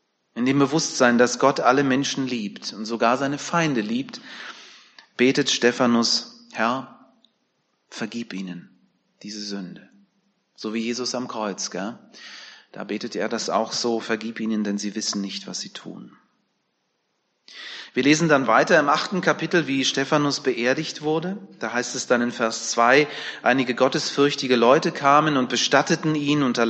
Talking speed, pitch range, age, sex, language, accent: 150 wpm, 115-140 Hz, 30-49, male, German, German